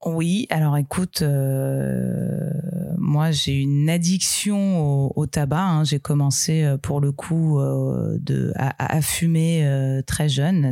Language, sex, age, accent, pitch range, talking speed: French, female, 30-49, French, 140-165 Hz, 140 wpm